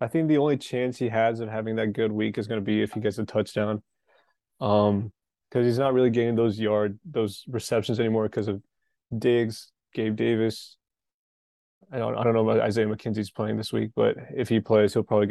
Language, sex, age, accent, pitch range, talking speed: English, male, 20-39, American, 105-115 Hz, 210 wpm